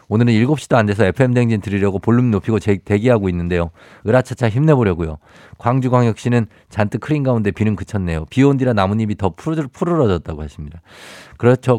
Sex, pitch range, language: male, 100-130 Hz, Korean